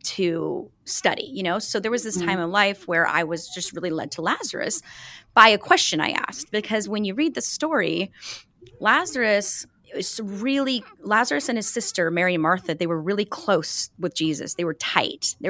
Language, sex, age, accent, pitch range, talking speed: English, female, 20-39, American, 175-230 Hz, 195 wpm